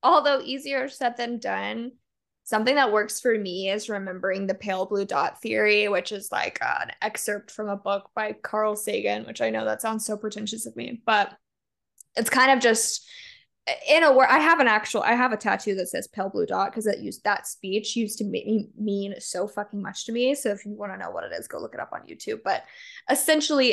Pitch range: 205-250 Hz